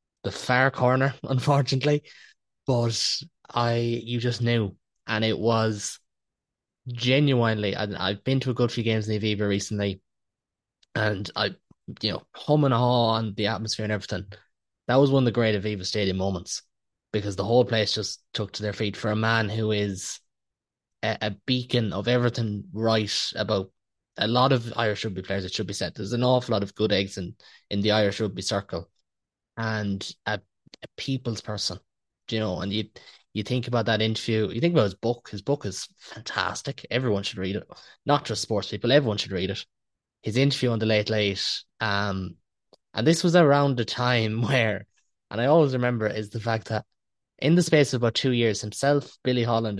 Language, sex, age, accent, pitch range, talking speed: English, male, 20-39, Irish, 105-125 Hz, 190 wpm